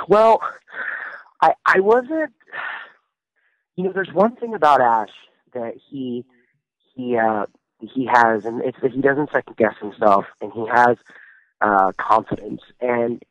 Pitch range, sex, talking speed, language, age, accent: 110-130 Hz, male, 140 wpm, English, 30-49, American